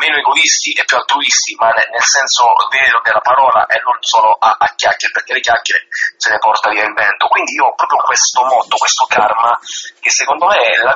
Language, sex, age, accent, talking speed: Italian, male, 30-49, native, 220 wpm